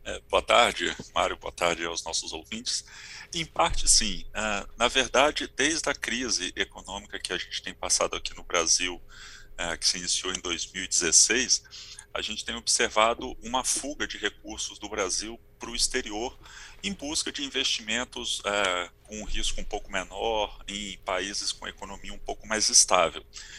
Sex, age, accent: male, 40-59, Brazilian